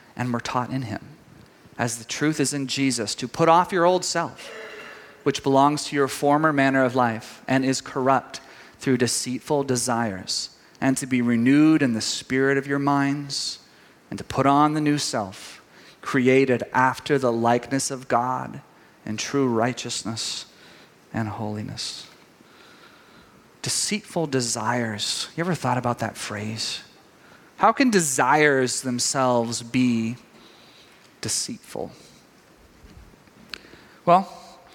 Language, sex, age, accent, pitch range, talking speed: English, male, 30-49, American, 125-165 Hz, 130 wpm